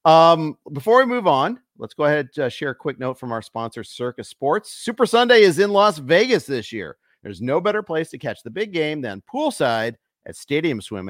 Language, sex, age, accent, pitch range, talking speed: English, male, 40-59, American, 105-175 Hz, 220 wpm